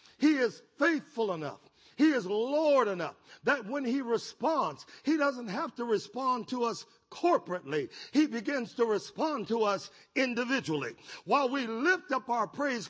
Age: 50-69